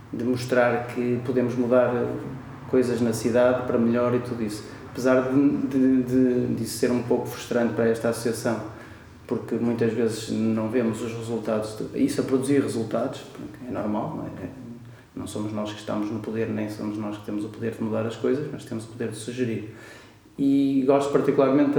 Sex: male